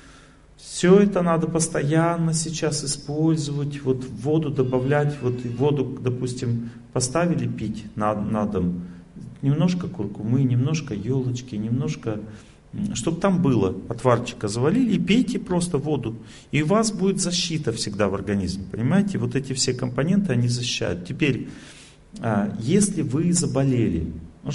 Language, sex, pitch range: Russian, male, 110-160 Hz